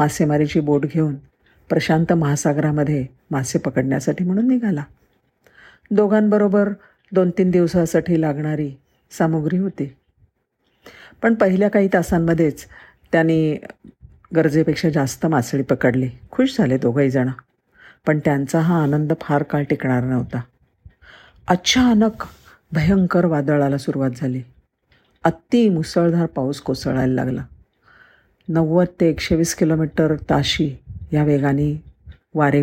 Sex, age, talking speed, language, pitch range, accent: female, 50-69, 100 wpm, Marathi, 140-180 Hz, native